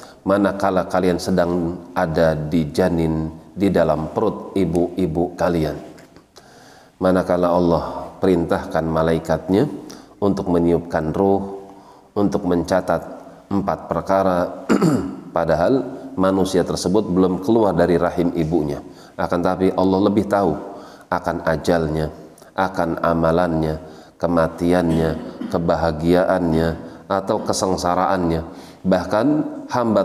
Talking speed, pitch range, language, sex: 90 wpm, 80-95 Hz, Indonesian, male